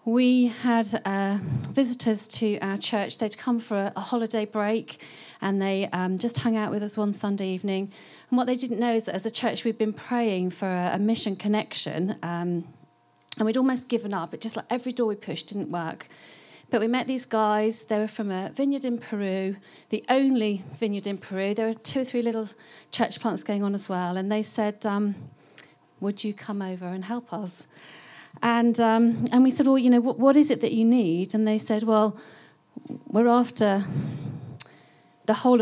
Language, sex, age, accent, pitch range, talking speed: English, female, 40-59, British, 195-235 Hz, 205 wpm